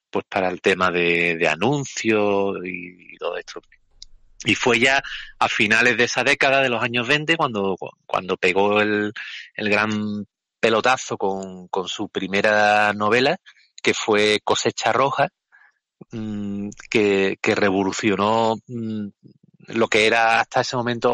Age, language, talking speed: 30-49, Spanish, 135 wpm